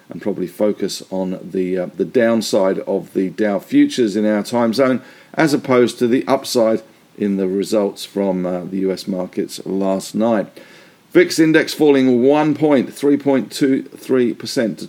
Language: English